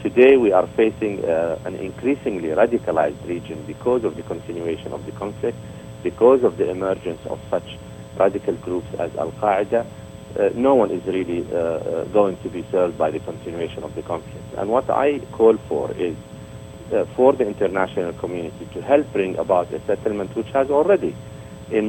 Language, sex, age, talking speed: English, male, 50-69, 175 wpm